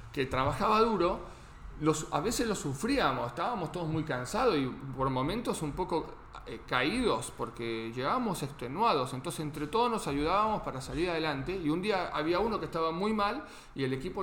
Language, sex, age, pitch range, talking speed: English, male, 40-59, 135-195 Hz, 175 wpm